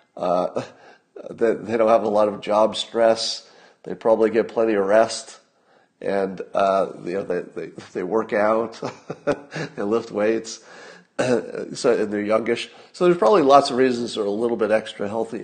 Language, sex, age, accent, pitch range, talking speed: English, male, 50-69, American, 110-140 Hz, 170 wpm